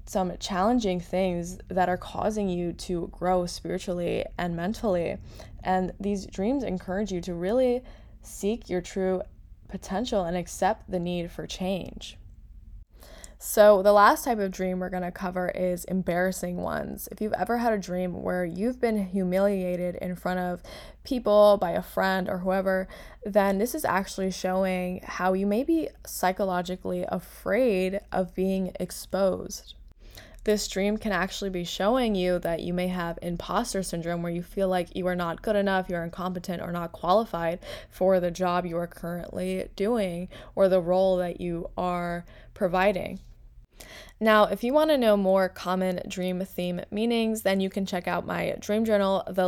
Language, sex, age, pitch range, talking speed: English, female, 10-29, 180-200 Hz, 165 wpm